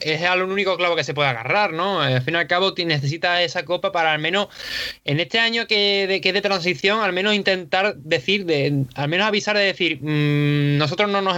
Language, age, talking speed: Spanish, 20-39, 230 wpm